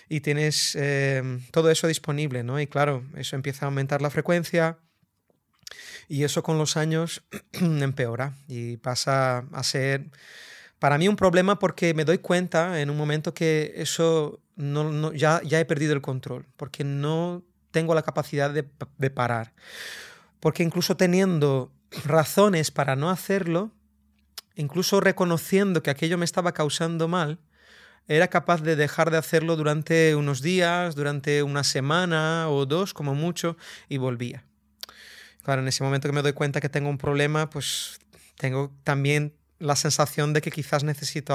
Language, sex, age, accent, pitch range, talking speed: Spanish, male, 30-49, Spanish, 140-165 Hz, 155 wpm